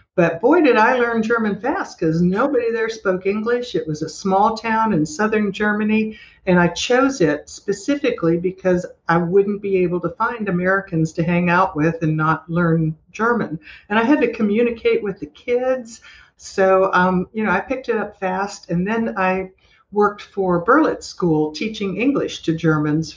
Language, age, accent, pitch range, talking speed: English, 60-79, American, 160-205 Hz, 180 wpm